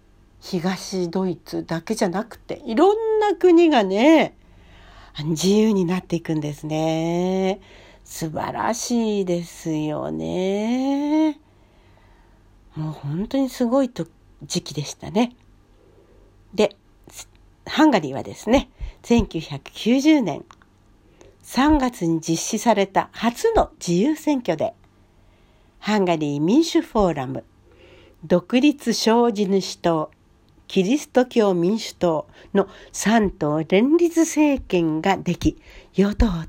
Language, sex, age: Japanese, female, 60-79